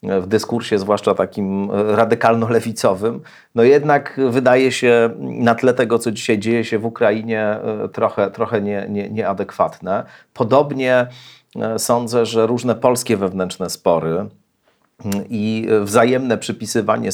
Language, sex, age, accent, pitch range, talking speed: Polish, male, 40-59, native, 100-120 Hz, 110 wpm